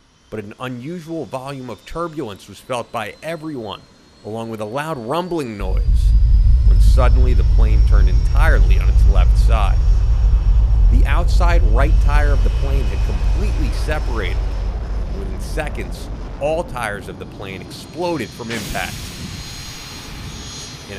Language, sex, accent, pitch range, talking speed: English, male, American, 95-135 Hz, 135 wpm